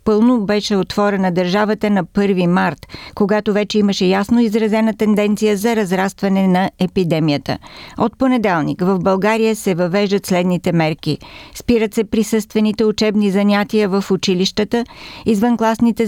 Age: 50-69